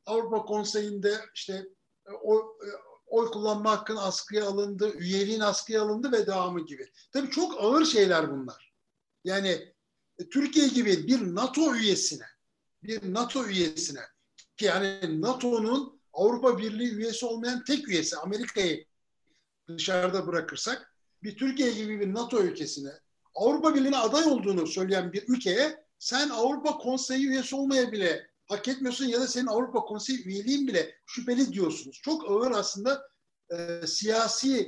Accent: native